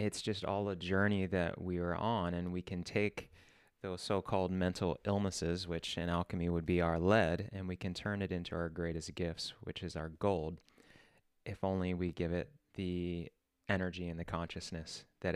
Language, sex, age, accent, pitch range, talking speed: English, male, 30-49, American, 85-105 Hz, 190 wpm